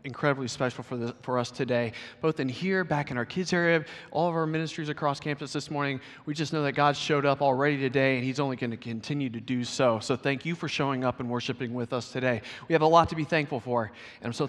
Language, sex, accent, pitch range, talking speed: English, male, American, 115-140 Hz, 260 wpm